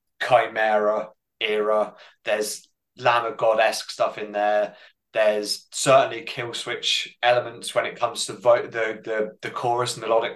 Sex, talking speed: male, 140 wpm